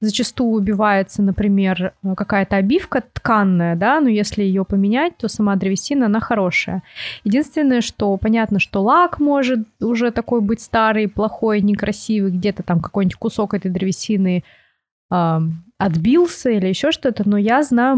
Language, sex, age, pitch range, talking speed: Russian, female, 20-39, 195-230 Hz, 140 wpm